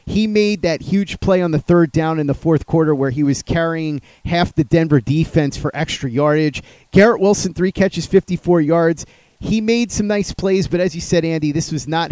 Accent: American